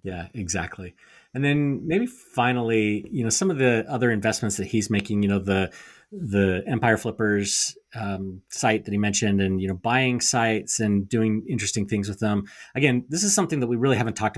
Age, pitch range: 30-49, 100-120 Hz